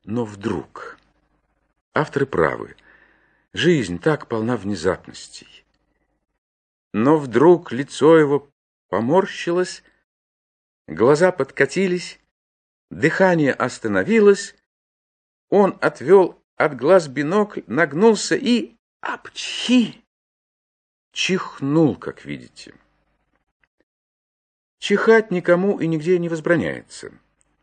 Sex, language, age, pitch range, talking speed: male, Russian, 50-69, 125-190 Hz, 75 wpm